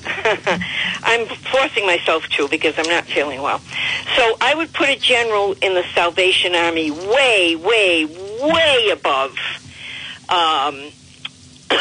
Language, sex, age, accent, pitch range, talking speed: English, female, 60-79, American, 170-265 Hz, 120 wpm